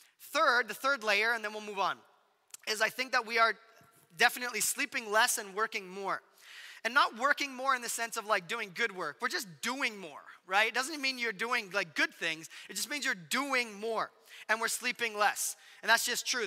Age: 20-39